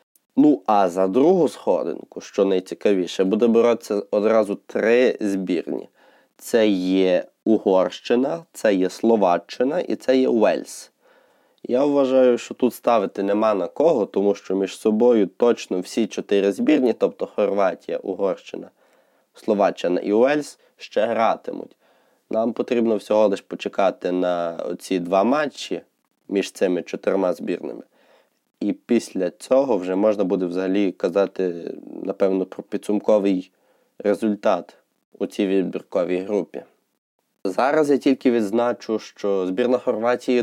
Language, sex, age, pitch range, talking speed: Ukrainian, male, 20-39, 95-125 Hz, 120 wpm